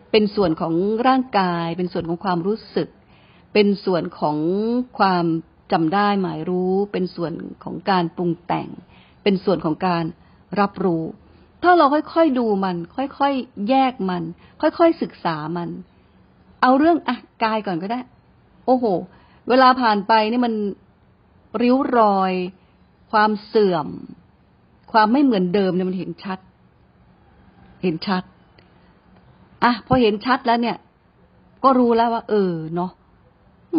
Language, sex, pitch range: Thai, female, 175-225 Hz